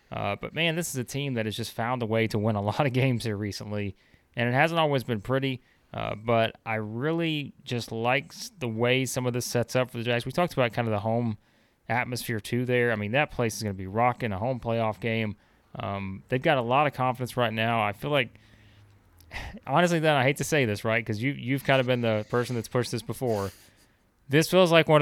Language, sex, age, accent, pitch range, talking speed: English, male, 30-49, American, 110-130 Hz, 245 wpm